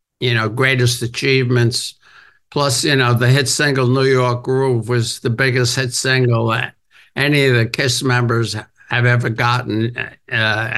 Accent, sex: American, male